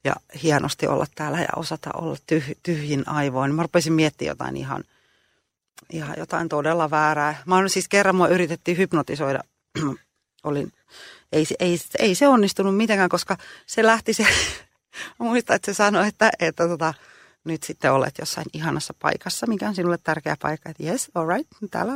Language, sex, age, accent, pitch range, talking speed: Finnish, female, 30-49, native, 160-245 Hz, 165 wpm